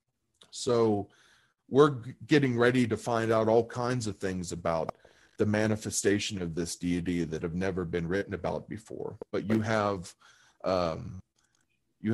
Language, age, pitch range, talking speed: Portuguese, 40-59, 100-125 Hz, 145 wpm